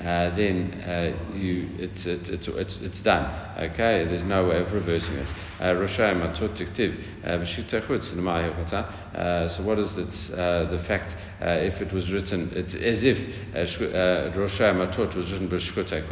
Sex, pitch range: male, 85-100 Hz